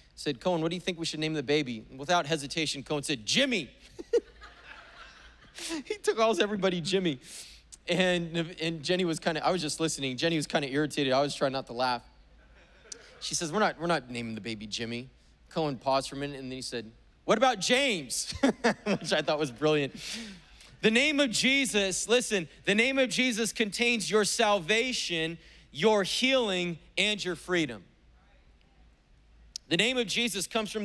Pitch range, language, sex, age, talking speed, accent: 150-215 Hz, English, male, 30-49, 180 wpm, American